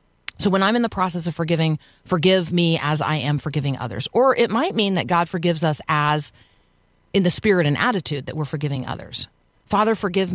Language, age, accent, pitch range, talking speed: English, 40-59, American, 140-175 Hz, 205 wpm